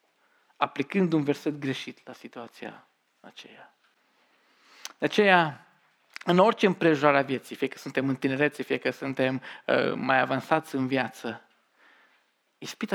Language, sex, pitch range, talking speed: Romanian, male, 135-185 Hz, 130 wpm